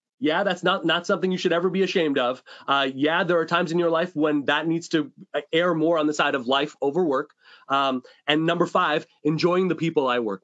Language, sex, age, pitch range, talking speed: English, male, 30-49, 165-225 Hz, 235 wpm